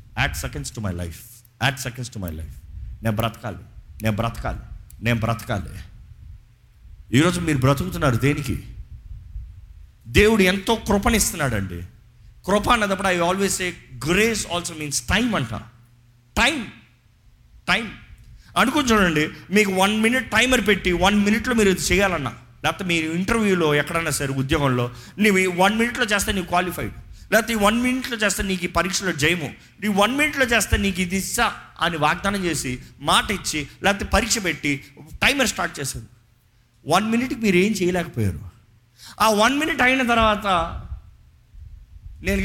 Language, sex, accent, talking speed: Telugu, male, native, 150 wpm